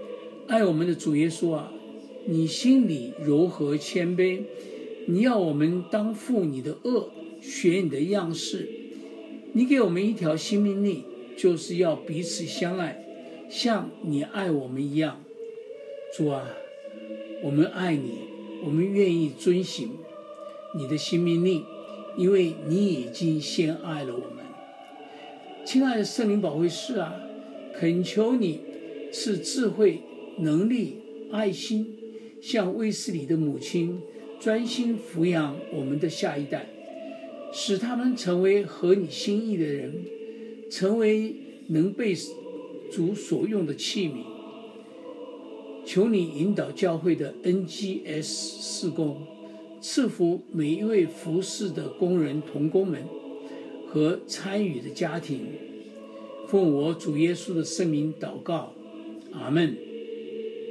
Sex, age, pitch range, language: male, 60-79, 160-225 Hz, English